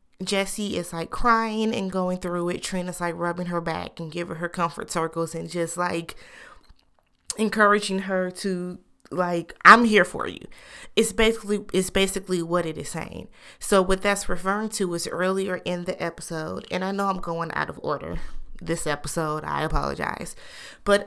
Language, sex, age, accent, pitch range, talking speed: English, female, 20-39, American, 170-200 Hz, 170 wpm